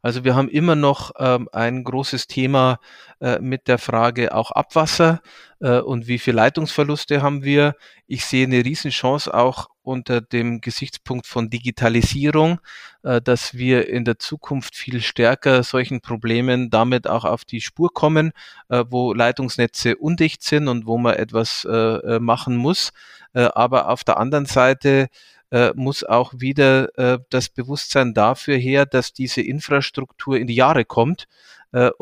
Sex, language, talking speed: male, German, 155 wpm